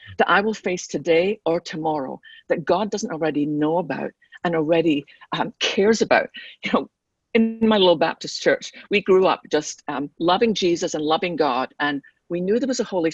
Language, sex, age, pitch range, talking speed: English, female, 50-69, 160-230 Hz, 190 wpm